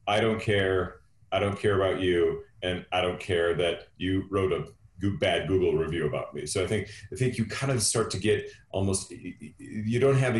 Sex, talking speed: male, 215 wpm